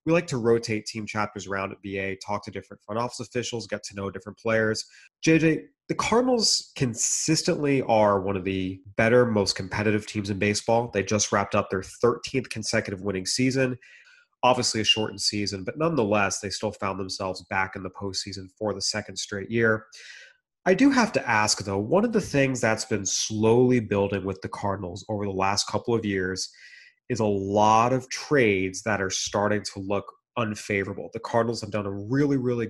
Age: 30-49